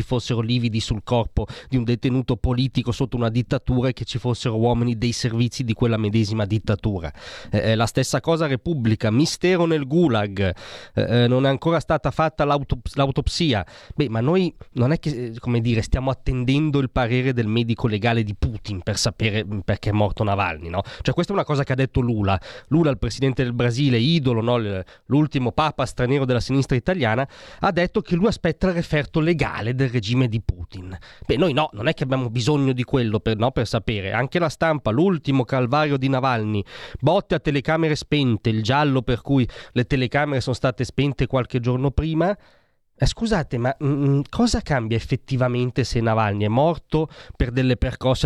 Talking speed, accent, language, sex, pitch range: 180 wpm, native, Italian, male, 115-140 Hz